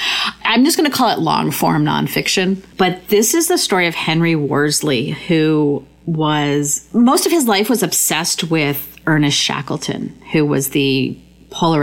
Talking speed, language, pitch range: 160 wpm, English, 145-175 Hz